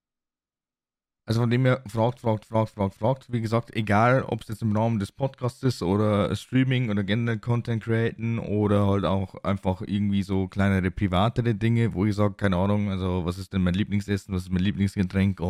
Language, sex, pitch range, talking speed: German, male, 100-120 Hz, 195 wpm